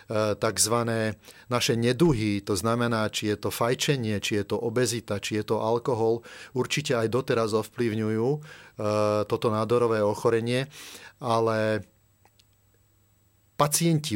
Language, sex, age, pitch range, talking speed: Slovak, male, 30-49, 105-120 Hz, 110 wpm